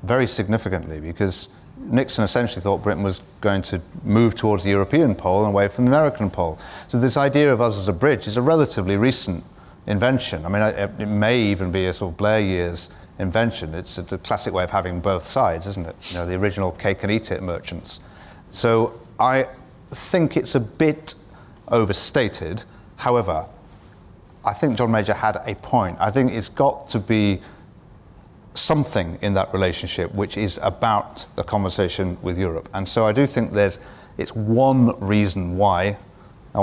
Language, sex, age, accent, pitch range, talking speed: English, male, 40-59, British, 95-115 Hz, 175 wpm